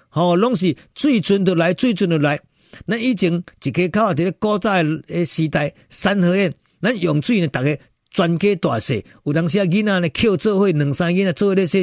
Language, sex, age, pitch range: Chinese, male, 50-69, 130-180 Hz